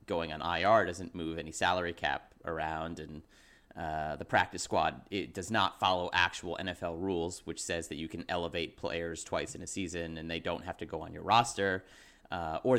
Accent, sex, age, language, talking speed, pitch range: American, male, 30-49, English, 200 wpm, 85-120 Hz